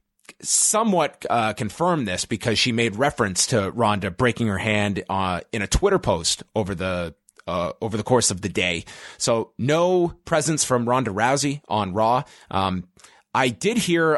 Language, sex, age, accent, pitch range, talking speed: English, male, 30-49, American, 105-135 Hz, 165 wpm